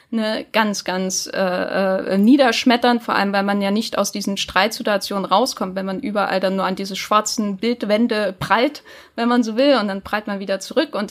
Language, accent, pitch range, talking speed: German, German, 205-250 Hz, 200 wpm